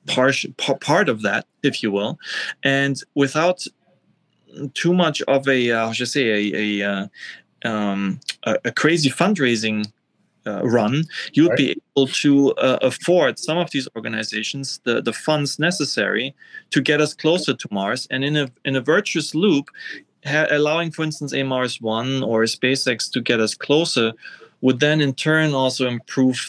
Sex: male